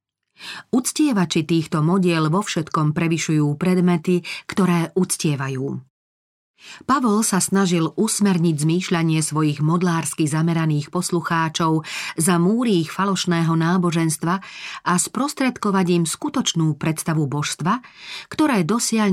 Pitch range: 155-185 Hz